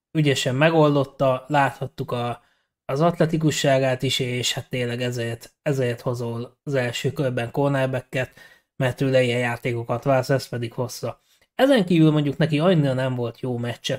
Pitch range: 130-150 Hz